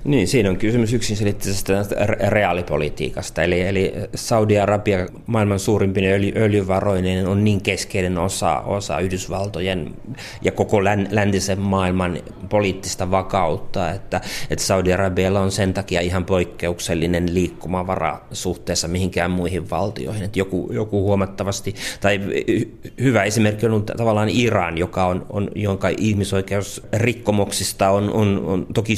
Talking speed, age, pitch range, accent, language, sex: 120 wpm, 30-49, 90-105 Hz, native, Finnish, male